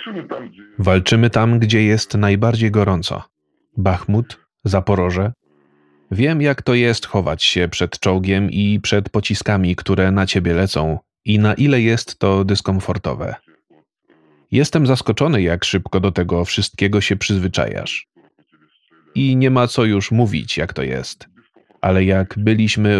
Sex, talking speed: male, 130 wpm